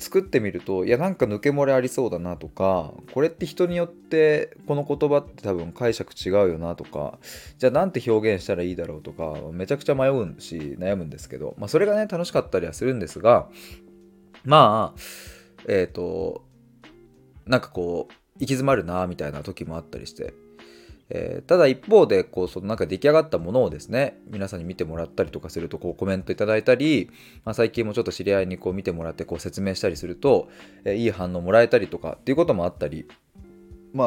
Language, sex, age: Japanese, male, 20-39